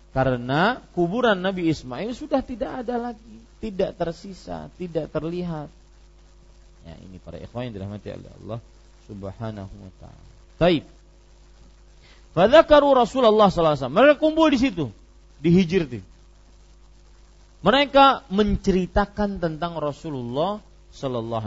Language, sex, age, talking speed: Malay, male, 40-59, 115 wpm